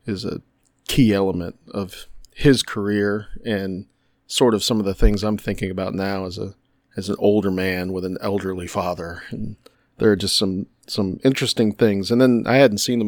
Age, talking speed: 40-59, 195 wpm